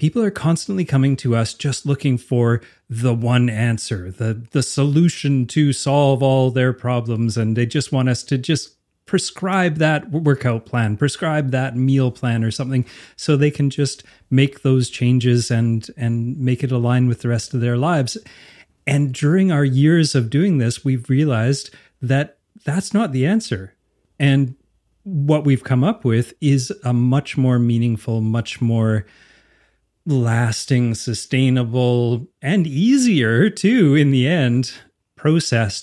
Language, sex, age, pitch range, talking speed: English, male, 30-49, 115-140 Hz, 150 wpm